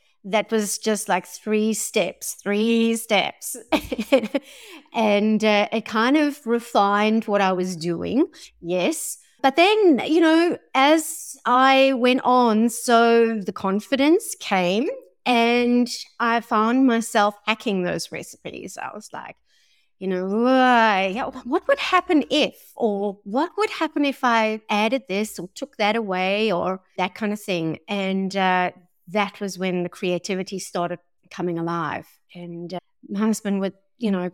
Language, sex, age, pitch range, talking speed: English, female, 30-49, 195-270 Hz, 140 wpm